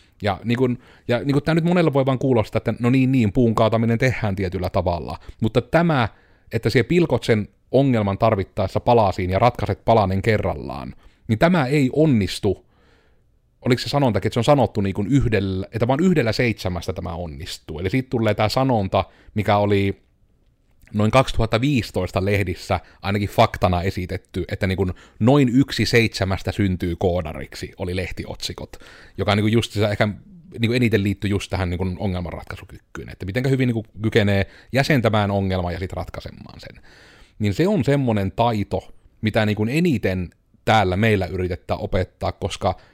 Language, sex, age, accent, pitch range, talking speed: Finnish, male, 30-49, native, 95-120 Hz, 155 wpm